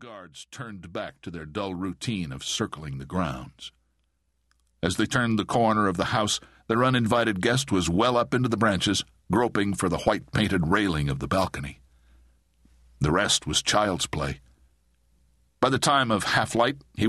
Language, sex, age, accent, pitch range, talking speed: English, male, 60-79, American, 75-115 Hz, 165 wpm